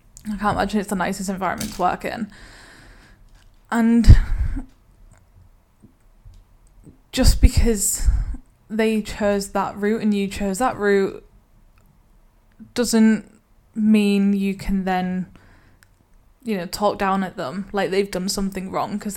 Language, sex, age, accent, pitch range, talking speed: English, female, 10-29, British, 180-205 Hz, 120 wpm